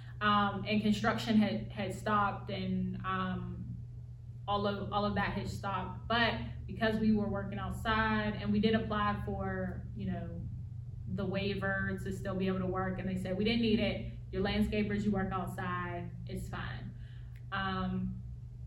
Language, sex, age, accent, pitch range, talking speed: English, female, 20-39, American, 95-125 Hz, 165 wpm